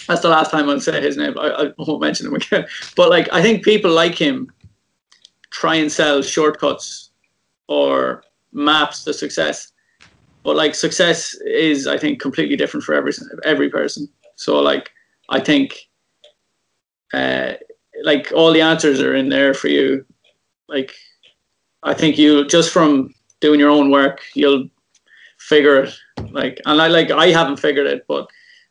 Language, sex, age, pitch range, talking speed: English, male, 20-39, 140-175 Hz, 160 wpm